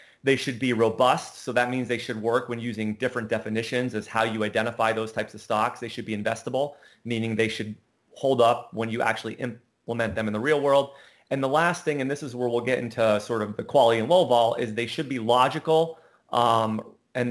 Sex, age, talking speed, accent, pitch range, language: male, 30-49, 225 wpm, American, 115-135 Hz, English